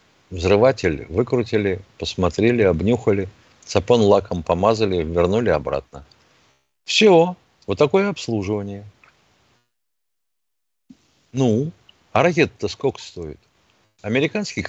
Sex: male